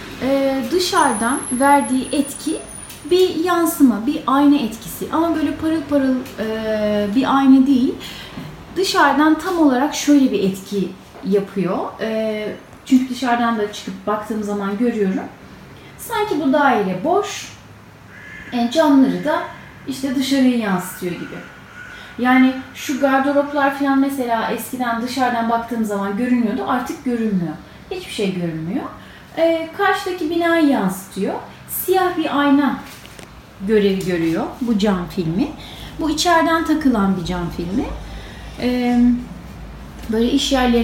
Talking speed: 115 wpm